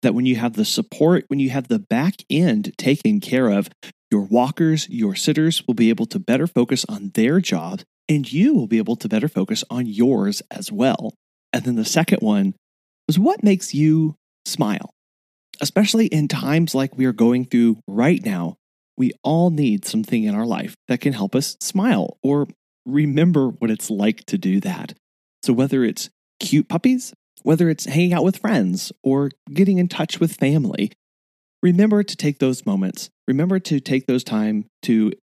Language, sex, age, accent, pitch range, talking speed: English, male, 30-49, American, 125-200 Hz, 185 wpm